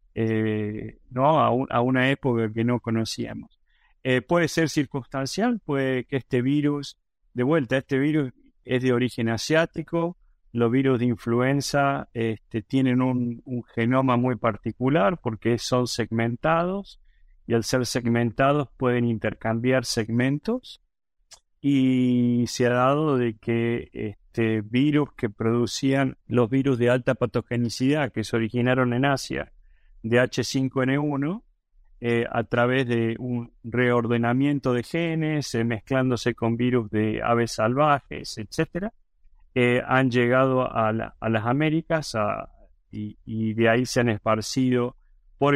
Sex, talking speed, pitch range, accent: male, 130 wpm, 115-135 Hz, Argentinian